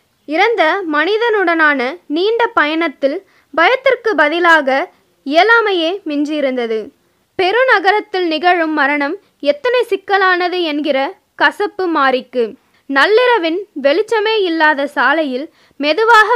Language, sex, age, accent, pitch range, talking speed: Tamil, female, 20-39, native, 290-380 Hz, 75 wpm